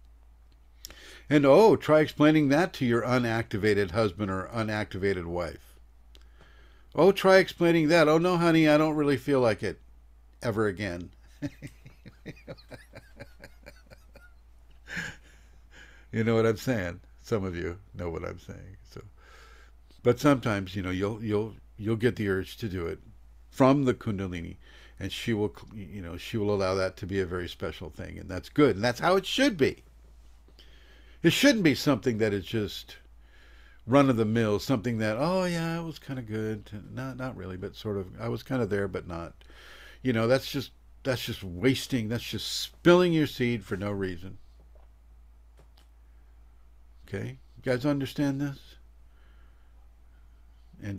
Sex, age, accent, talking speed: male, 60-79, American, 160 wpm